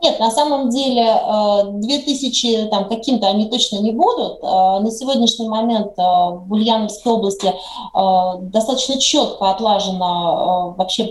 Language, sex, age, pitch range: Russian, female, 30-49, 190-245 Hz